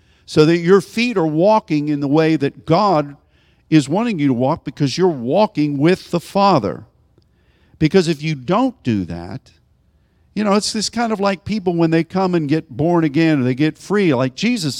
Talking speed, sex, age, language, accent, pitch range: 200 wpm, male, 50-69, English, American, 140-205 Hz